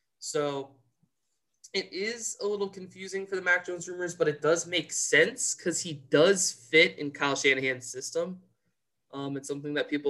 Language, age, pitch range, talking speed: English, 20-39, 130-175 Hz, 170 wpm